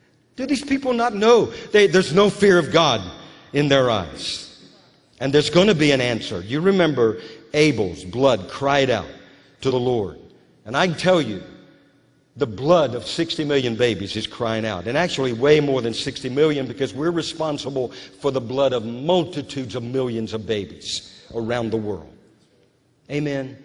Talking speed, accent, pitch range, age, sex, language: 170 wpm, American, 120-155 Hz, 50-69, male, English